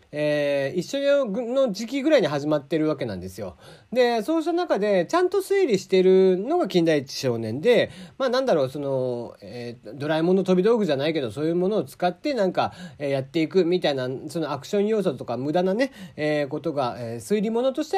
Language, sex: Japanese, male